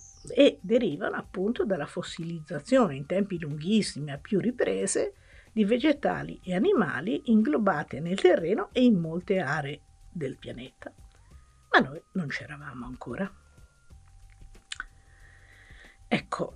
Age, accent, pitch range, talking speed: 50-69, native, 135-190 Hz, 110 wpm